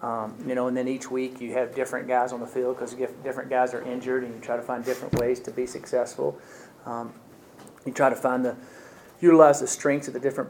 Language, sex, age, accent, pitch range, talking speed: English, male, 40-59, American, 120-135 Hz, 235 wpm